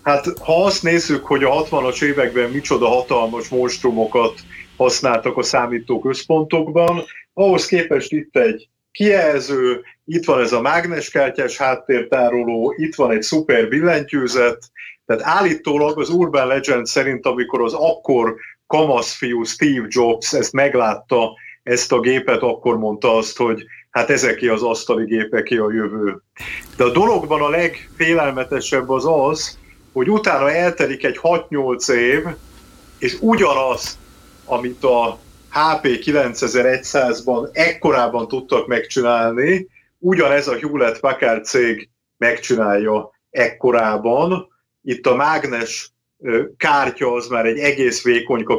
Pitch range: 120-165 Hz